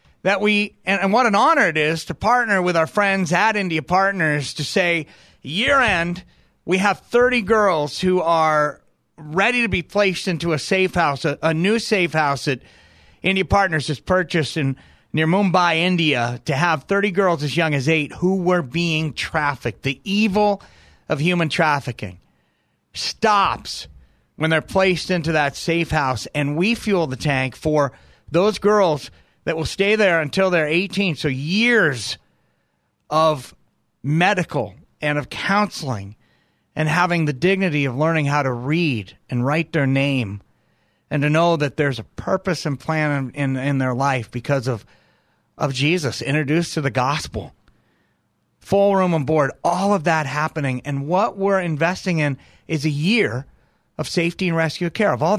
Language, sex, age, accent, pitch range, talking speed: English, male, 40-59, American, 145-190 Hz, 165 wpm